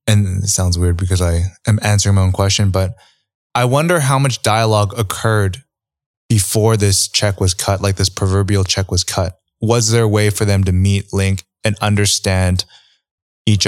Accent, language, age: American, English, 20-39